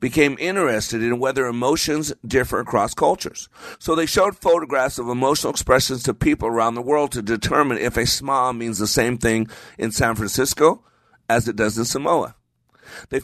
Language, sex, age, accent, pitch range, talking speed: English, male, 50-69, American, 110-145 Hz, 170 wpm